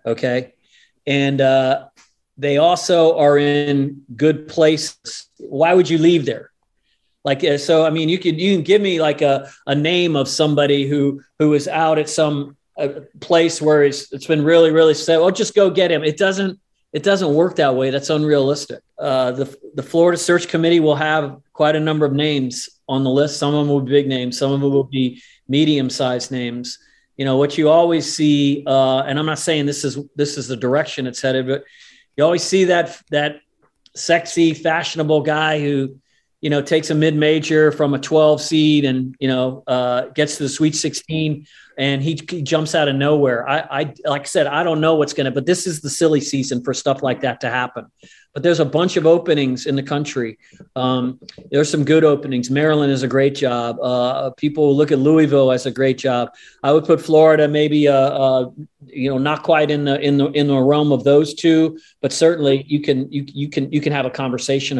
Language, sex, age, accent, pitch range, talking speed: English, male, 40-59, American, 135-160 Hz, 210 wpm